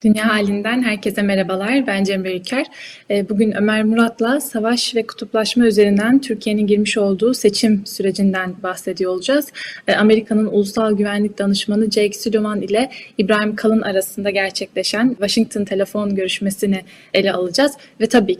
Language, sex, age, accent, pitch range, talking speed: Turkish, female, 10-29, native, 205-235 Hz, 125 wpm